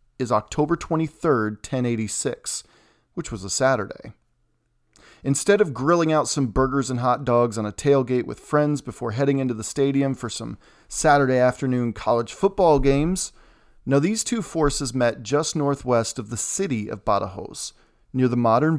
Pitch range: 115-150 Hz